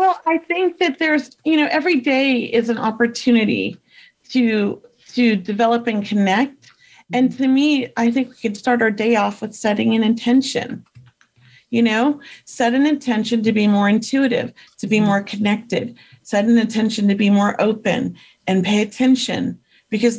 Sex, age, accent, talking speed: female, 40-59, American, 165 wpm